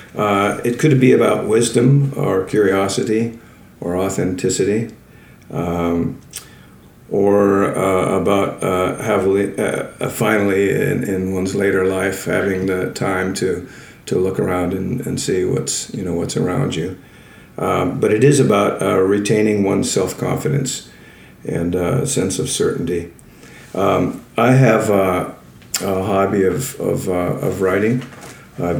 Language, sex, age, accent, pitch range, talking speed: English, male, 50-69, American, 95-110 Hz, 135 wpm